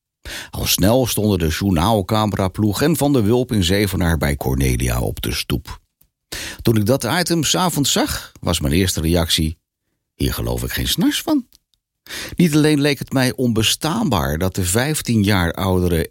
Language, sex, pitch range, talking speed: Dutch, male, 95-135 Hz, 165 wpm